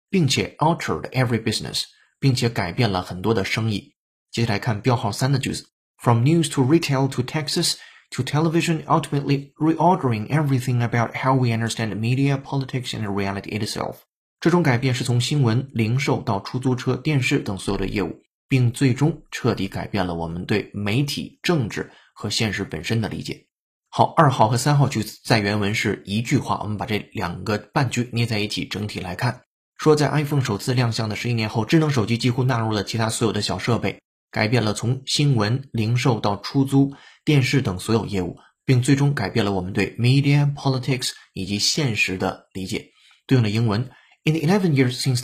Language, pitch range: Chinese, 105-140 Hz